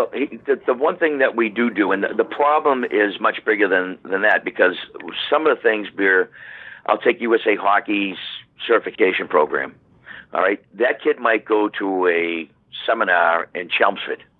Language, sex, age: English, male, 50-69